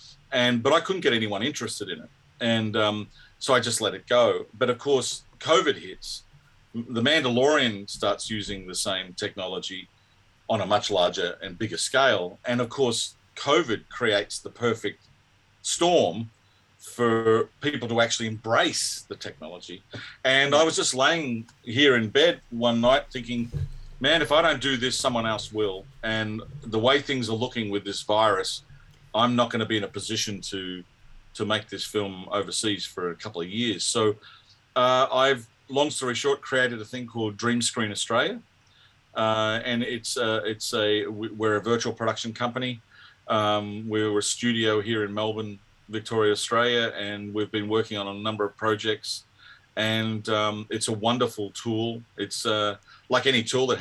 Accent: Australian